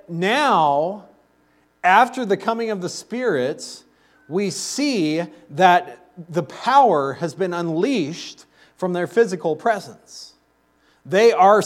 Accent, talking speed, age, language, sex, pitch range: American, 110 wpm, 40-59, English, male, 145-200 Hz